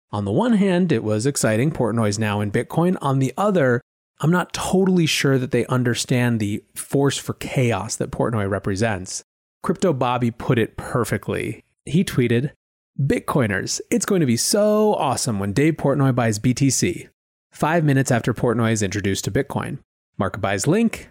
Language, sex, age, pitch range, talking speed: English, male, 30-49, 105-140 Hz, 165 wpm